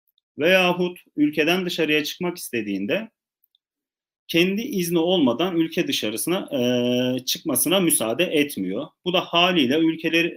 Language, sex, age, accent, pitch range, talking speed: Turkish, male, 40-59, native, 125-185 Hz, 105 wpm